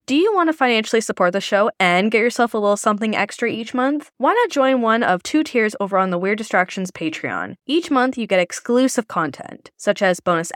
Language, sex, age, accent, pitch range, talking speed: English, female, 10-29, American, 185-270 Hz, 220 wpm